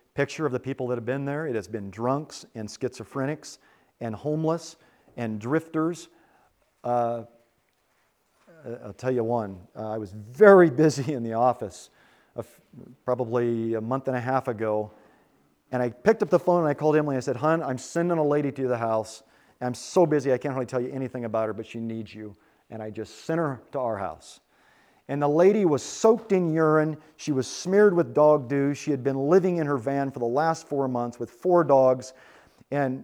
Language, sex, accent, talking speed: English, male, American, 205 wpm